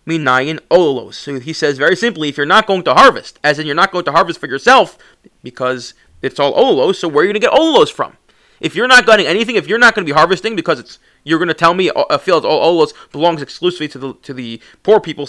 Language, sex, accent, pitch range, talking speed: English, male, American, 155-220 Hz, 265 wpm